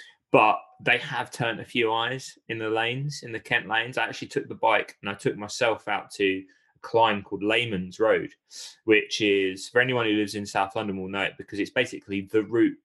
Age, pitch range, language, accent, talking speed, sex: 20-39, 100-125 Hz, English, British, 220 wpm, male